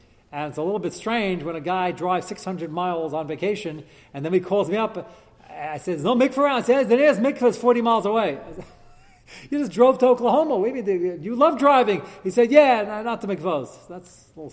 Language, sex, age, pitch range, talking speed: English, male, 40-59, 155-225 Hz, 220 wpm